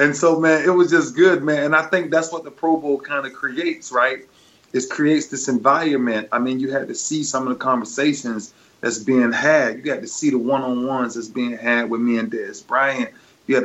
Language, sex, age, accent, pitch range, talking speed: English, male, 30-49, American, 115-145 Hz, 235 wpm